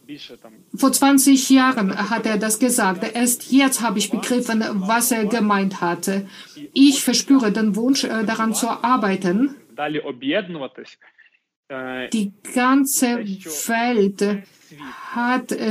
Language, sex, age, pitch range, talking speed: English, female, 50-69, 205-250 Hz, 105 wpm